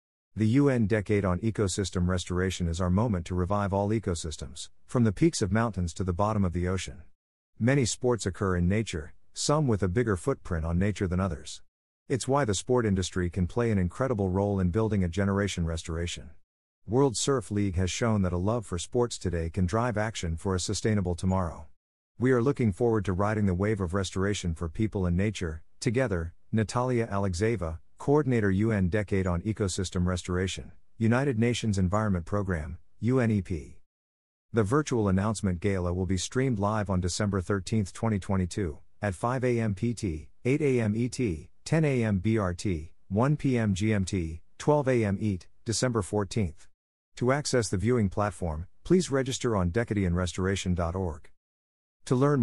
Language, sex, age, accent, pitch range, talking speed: English, male, 50-69, American, 90-115 Hz, 160 wpm